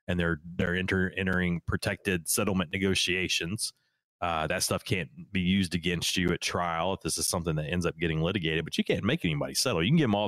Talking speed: 220 wpm